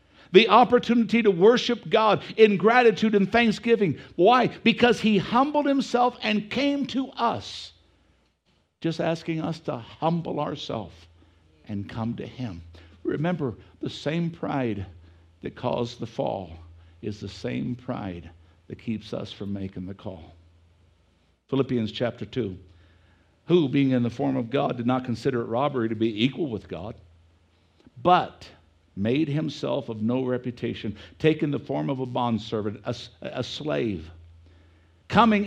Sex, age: male, 60-79